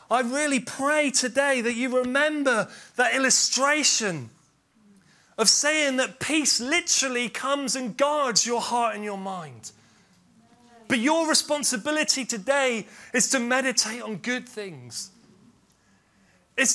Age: 30-49